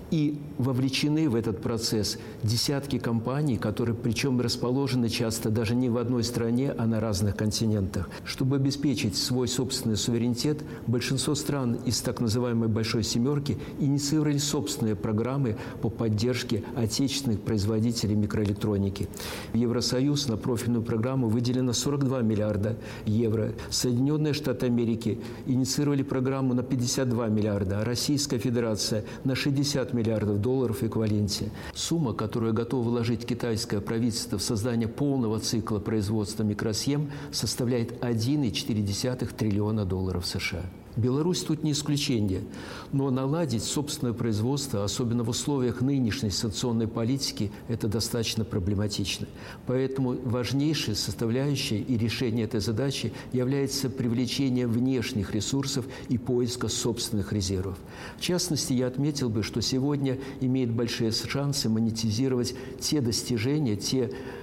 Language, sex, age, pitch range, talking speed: Russian, male, 60-79, 110-130 Hz, 120 wpm